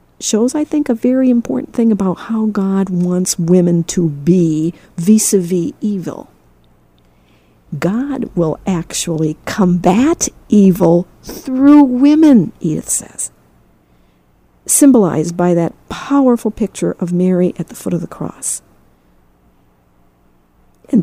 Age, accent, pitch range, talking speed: 50-69, American, 160-230 Hz, 110 wpm